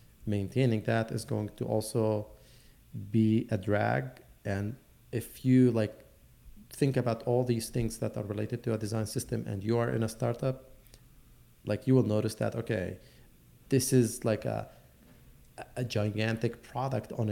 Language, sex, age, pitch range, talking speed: English, male, 30-49, 105-120 Hz, 155 wpm